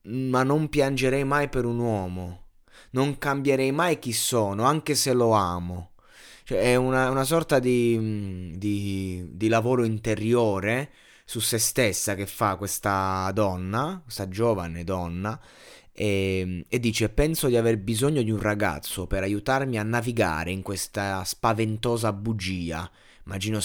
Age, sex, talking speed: 20-39, male, 140 wpm